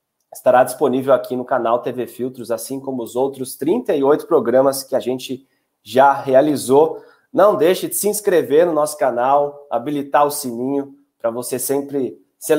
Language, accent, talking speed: Portuguese, Brazilian, 155 wpm